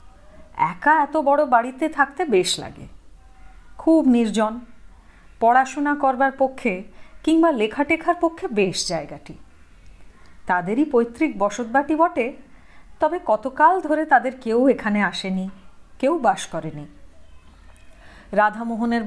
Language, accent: Hindi, native